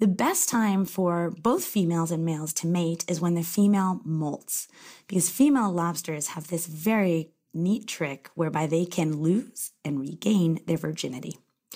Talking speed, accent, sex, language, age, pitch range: 160 wpm, American, female, English, 30-49, 165-210 Hz